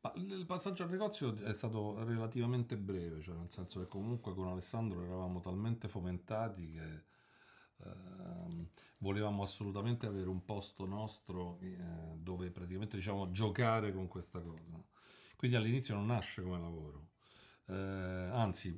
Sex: male